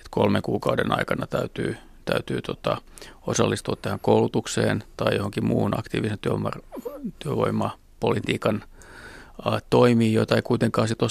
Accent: native